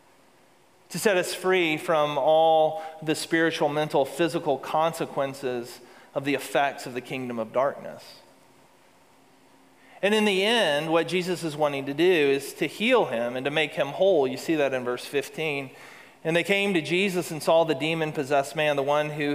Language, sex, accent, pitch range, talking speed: English, male, American, 140-175 Hz, 175 wpm